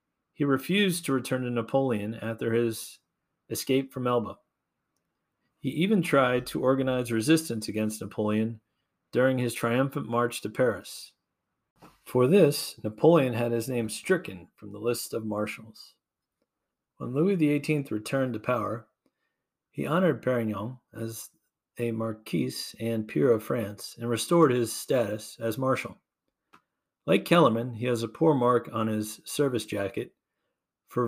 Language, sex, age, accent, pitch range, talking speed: English, male, 40-59, American, 110-130 Hz, 135 wpm